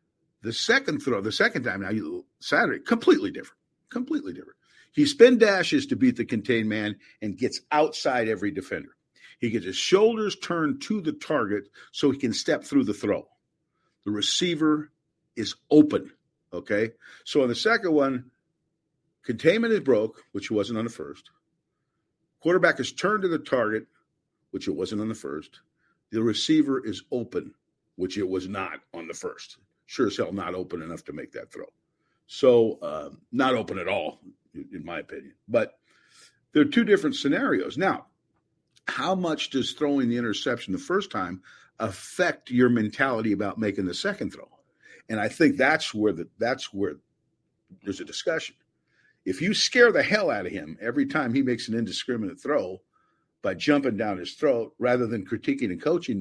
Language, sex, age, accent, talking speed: English, male, 50-69, American, 170 wpm